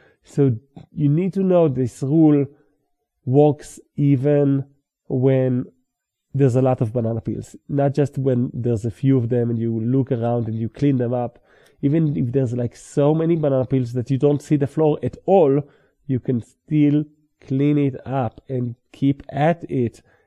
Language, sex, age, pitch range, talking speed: English, male, 40-59, 125-150 Hz, 175 wpm